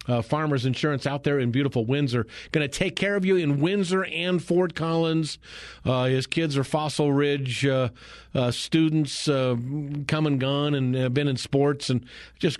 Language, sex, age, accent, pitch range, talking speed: English, male, 50-69, American, 125-155 Hz, 180 wpm